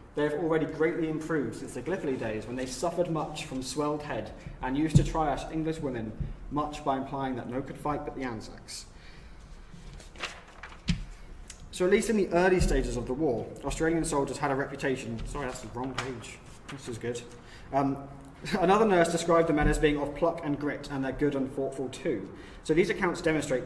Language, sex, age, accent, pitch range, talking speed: English, male, 20-39, British, 125-160 Hz, 195 wpm